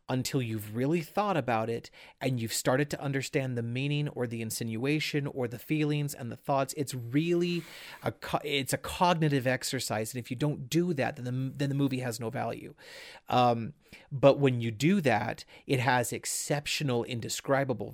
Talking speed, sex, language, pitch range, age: 170 wpm, male, English, 120-145 Hz, 30-49